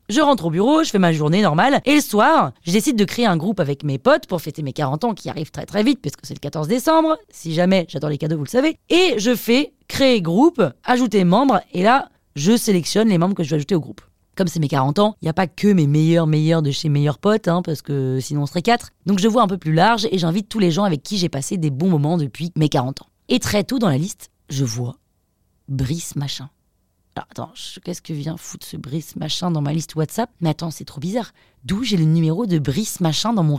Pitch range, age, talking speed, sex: 150-210 Hz, 20-39, 260 wpm, female